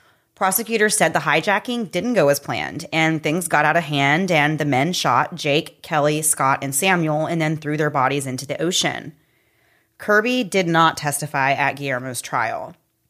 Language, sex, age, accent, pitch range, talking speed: English, female, 30-49, American, 145-175 Hz, 175 wpm